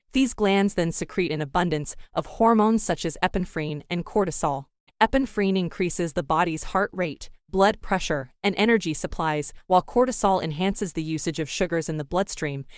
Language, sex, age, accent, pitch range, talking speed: English, female, 20-39, American, 160-195 Hz, 160 wpm